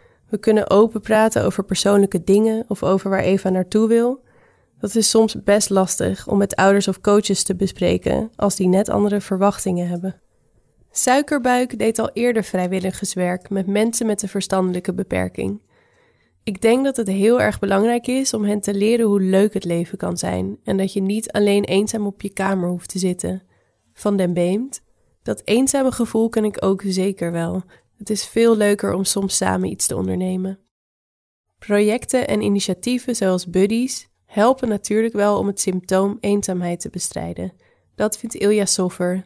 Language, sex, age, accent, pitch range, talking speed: English, female, 20-39, Dutch, 185-215 Hz, 170 wpm